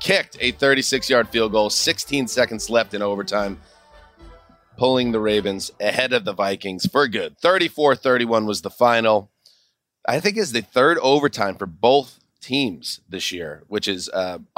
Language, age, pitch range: English, 30-49, 105-130 Hz